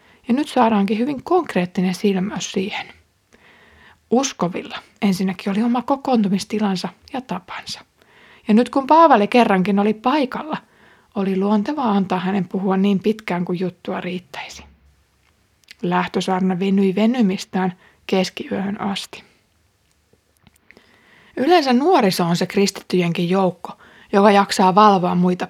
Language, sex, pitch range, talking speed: Finnish, female, 185-220 Hz, 110 wpm